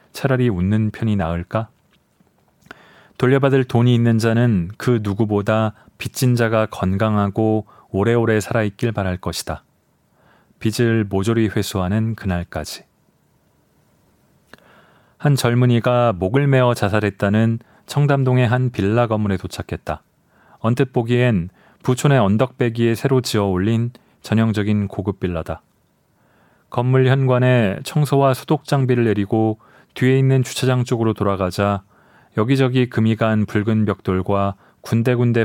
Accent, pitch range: native, 105-125 Hz